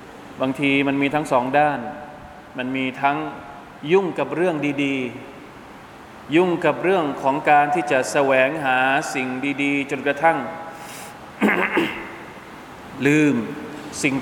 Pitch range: 130-150 Hz